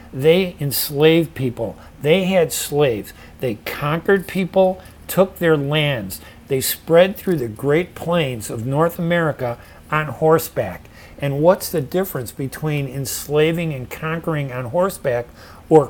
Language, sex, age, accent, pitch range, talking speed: English, male, 50-69, American, 125-160 Hz, 130 wpm